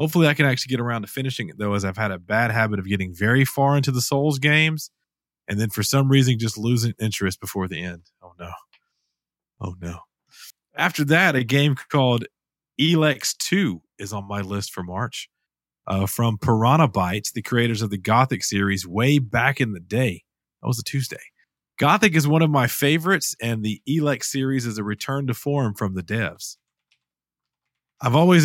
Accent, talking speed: American, 190 wpm